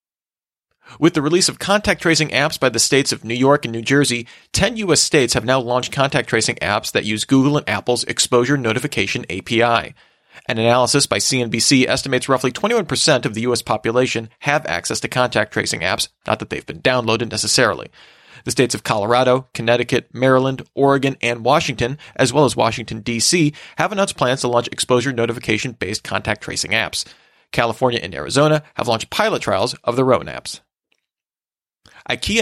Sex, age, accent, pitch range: male, 40-59, American, 115-145 Hz